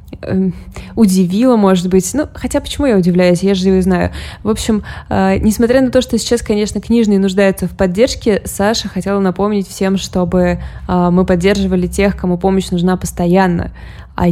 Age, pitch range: 20-39, 185-225 Hz